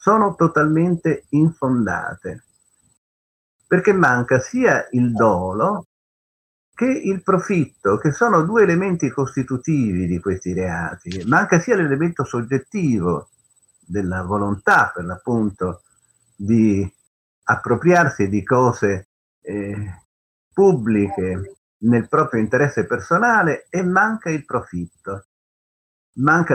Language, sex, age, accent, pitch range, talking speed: Italian, male, 50-69, native, 100-150 Hz, 95 wpm